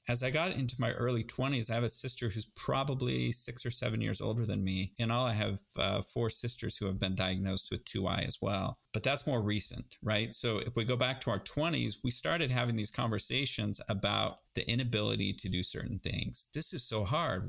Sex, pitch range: male, 100-120 Hz